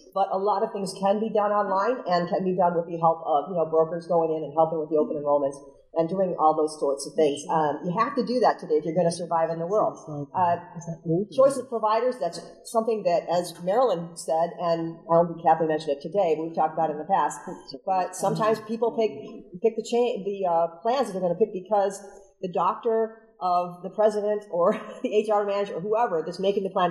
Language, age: English, 40-59